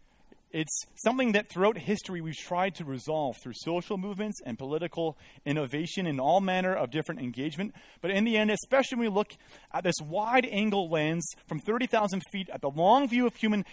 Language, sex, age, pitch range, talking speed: English, male, 30-49, 150-210 Hz, 185 wpm